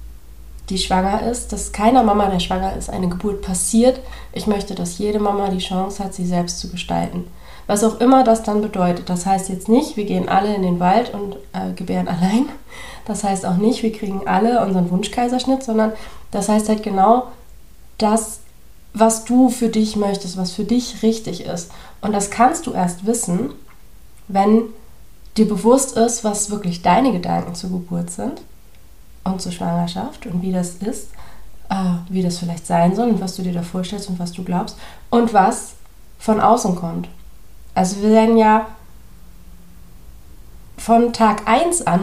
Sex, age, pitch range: female, 30-49, 180-220 Hz